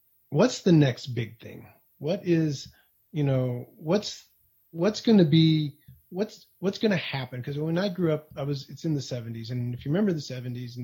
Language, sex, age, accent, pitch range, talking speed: English, male, 30-49, American, 130-160 Hz, 205 wpm